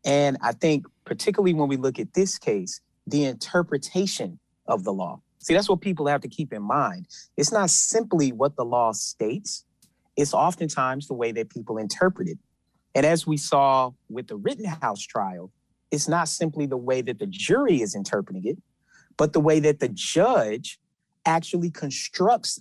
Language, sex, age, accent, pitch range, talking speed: English, male, 30-49, American, 130-175 Hz, 175 wpm